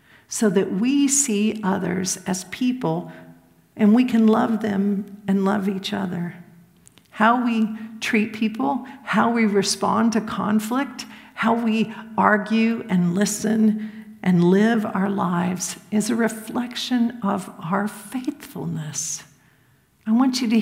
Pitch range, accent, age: 195-235 Hz, American, 50-69